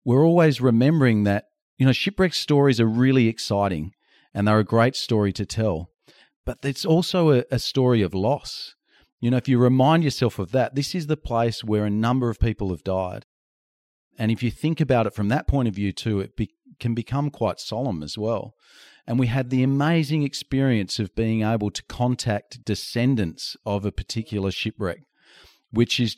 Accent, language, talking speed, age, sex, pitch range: Australian, English, 190 wpm, 40-59, male, 100-125 Hz